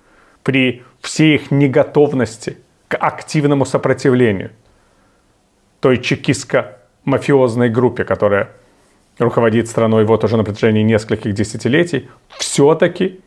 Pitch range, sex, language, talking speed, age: 115-145 Hz, male, Russian, 90 wpm, 30-49